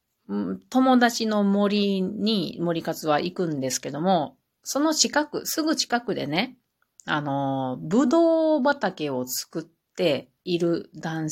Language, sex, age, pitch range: Japanese, female, 40-59, 160-245 Hz